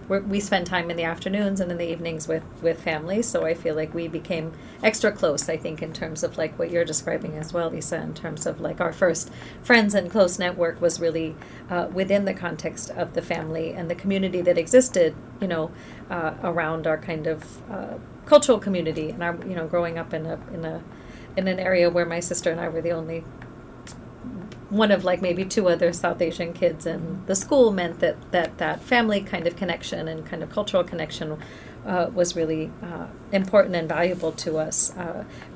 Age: 40-59